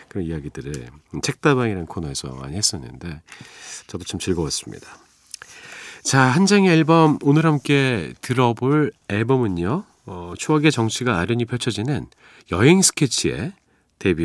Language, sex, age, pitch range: Korean, male, 40-59, 85-130 Hz